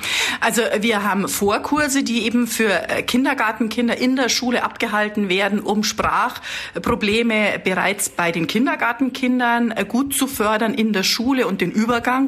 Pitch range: 200-250 Hz